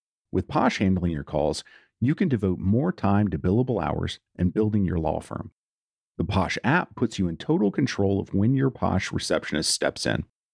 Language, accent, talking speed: English, American, 190 wpm